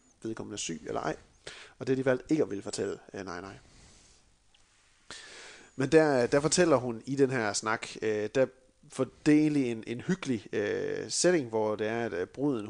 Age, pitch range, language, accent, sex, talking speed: 30-49, 110-140 Hz, Danish, native, male, 165 wpm